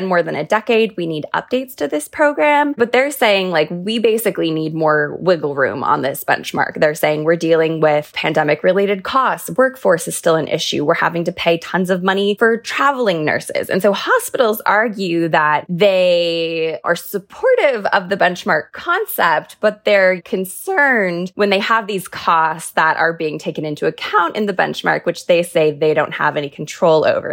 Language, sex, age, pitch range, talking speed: English, female, 20-39, 160-230 Hz, 185 wpm